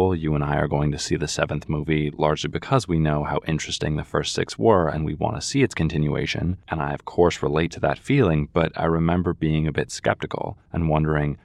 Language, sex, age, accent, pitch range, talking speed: English, male, 20-39, American, 75-90 Hz, 230 wpm